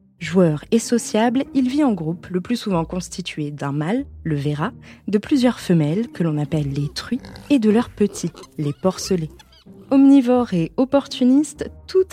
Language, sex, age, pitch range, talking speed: French, female, 20-39, 160-230 Hz, 165 wpm